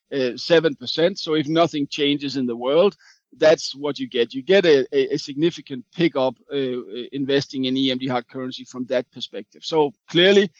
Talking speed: 180 wpm